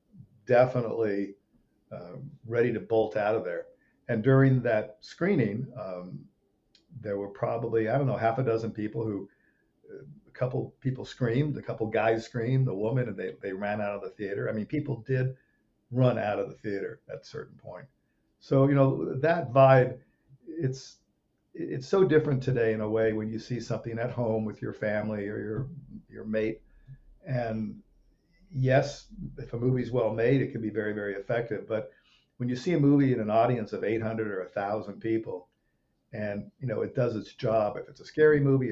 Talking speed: 190 wpm